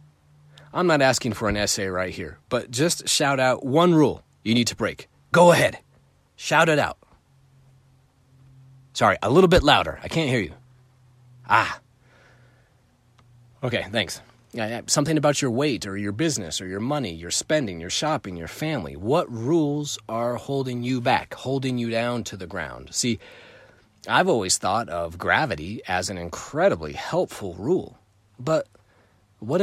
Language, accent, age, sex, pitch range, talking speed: English, American, 30-49, male, 95-140 Hz, 155 wpm